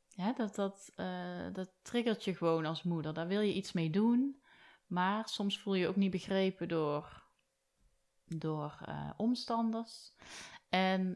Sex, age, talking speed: female, 30-49, 155 wpm